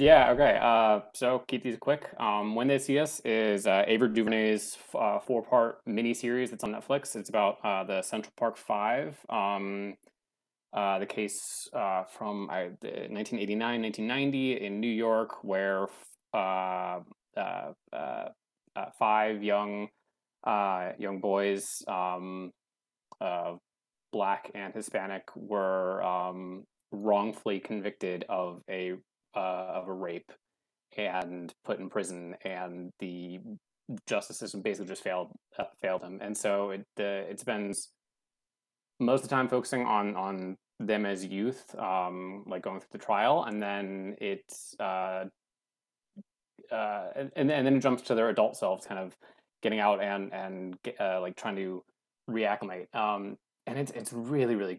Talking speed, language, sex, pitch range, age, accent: 145 wpm, English, male, 95-115 Hz, 20-39, American